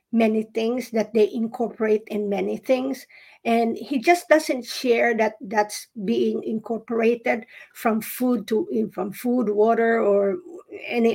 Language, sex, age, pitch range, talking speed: English, female, 50-69, 210-250 Hz, 135 wpm